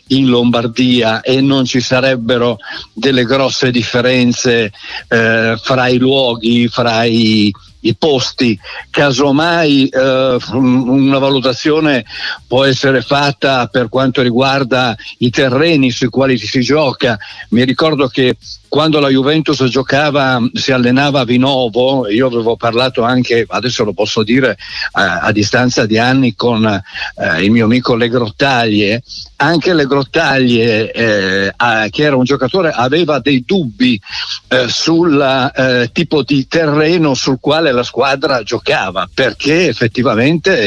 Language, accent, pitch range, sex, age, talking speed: Italian, native, 120-140 Hz, male, 60-79, 130 wpm